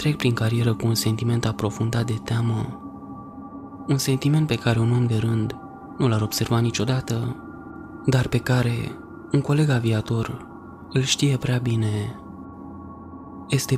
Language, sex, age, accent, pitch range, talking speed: Romanian, male, 20-39, native, 115-135 Hz, 140 wpm